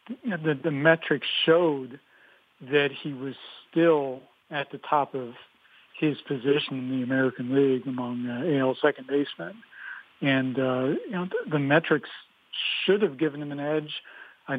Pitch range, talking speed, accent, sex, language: 130-145 Hz, 150 wpm, American, male, English